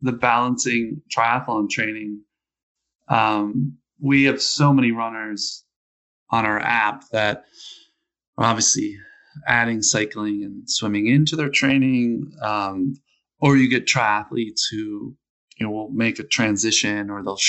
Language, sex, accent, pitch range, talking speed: English, male, American, 105-135 Hz, 125 wpm